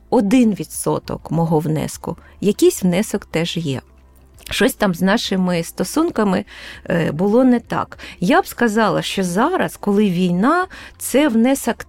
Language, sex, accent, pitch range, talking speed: Ukrainian, female, native, 180-245 Hz, 125 wpm